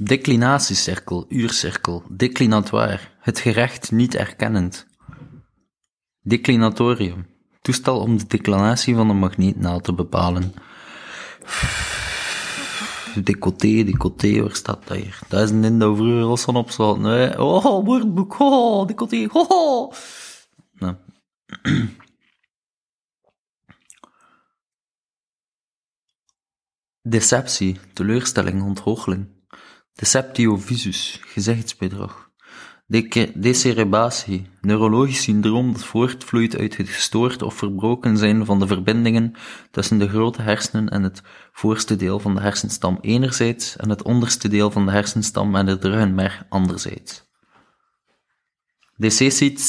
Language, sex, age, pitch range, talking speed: Dutch, male, 20-39, 100-120 Hz, 100 wpm